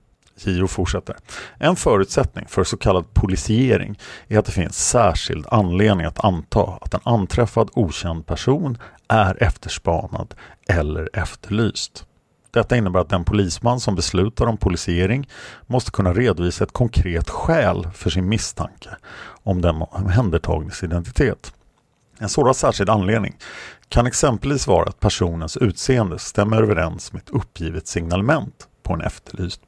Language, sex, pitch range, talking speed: Swedish, male, 90-115 Hz, 125 wpm